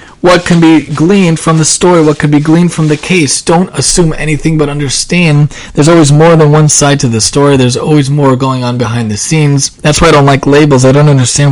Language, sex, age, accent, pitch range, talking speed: English, male, 30-49, American, 120-150 Hz, 235 wpm